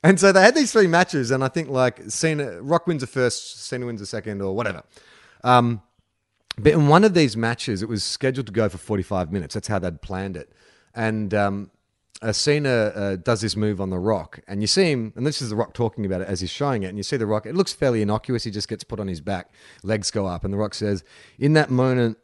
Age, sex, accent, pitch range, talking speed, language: 30-49, male, Australian, 100-125 Hz, 255 wpm, English